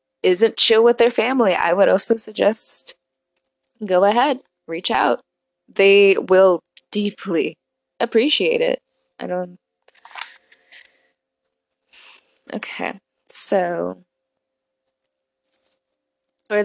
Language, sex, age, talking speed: English, female, 20-39, 85 wpm